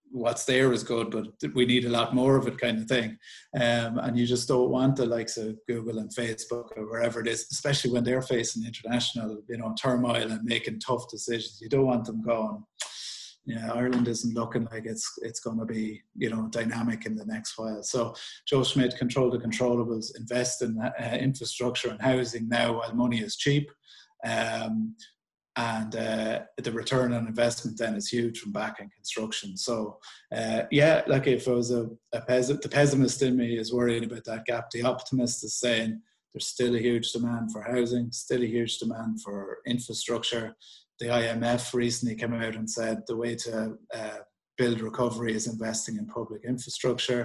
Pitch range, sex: 115-125 Hz, male